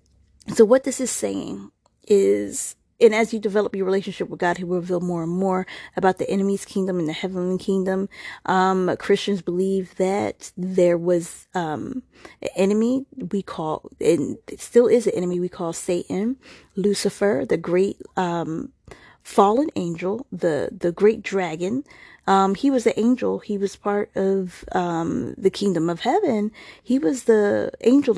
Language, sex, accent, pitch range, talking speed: English, female, American, 180-215 Hz, 160 wpm